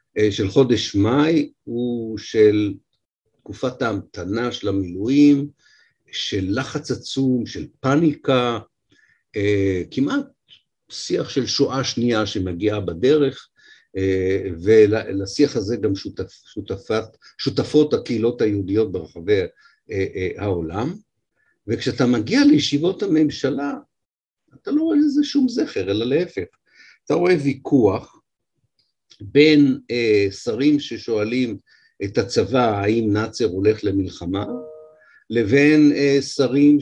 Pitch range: 105-150 Hz